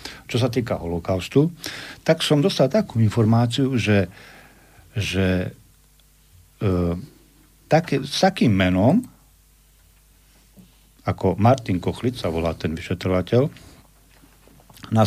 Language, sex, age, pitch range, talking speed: Slovak, male, 50-69, 100-130 Hz, 90 wpm